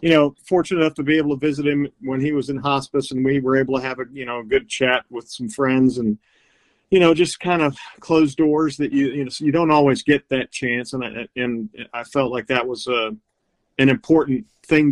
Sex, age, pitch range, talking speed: male, 40-59, 130-155 Hz, 245 wpm